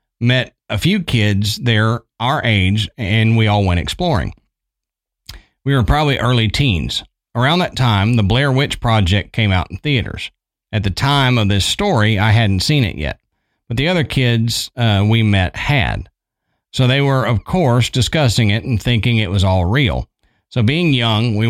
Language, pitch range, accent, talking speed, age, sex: English, 105-130 Hz, American, 180 wpm, 40-59, male